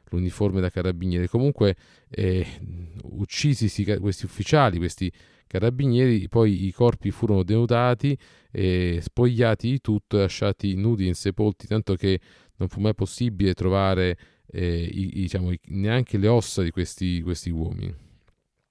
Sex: male